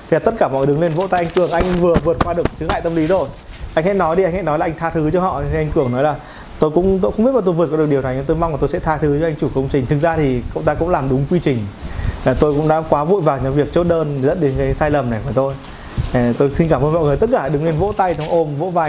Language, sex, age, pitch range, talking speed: Vietnamese, male, 20-39, 140-175 Hz, 355 wpm